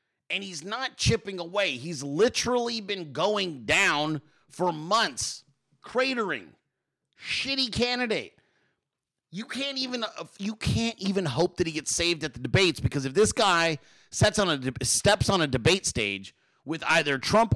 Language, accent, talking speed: English, American, 150 wpm